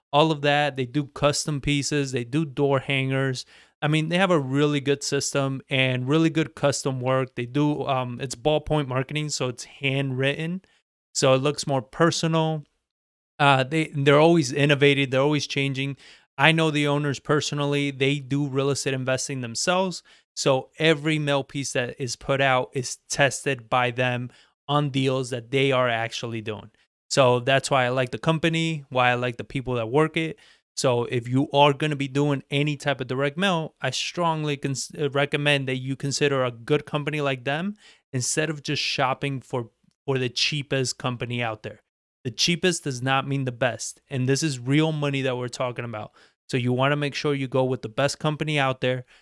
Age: 20-39